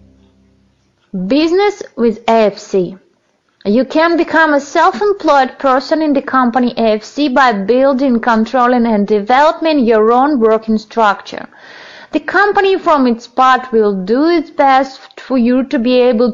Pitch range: 230-305 Hz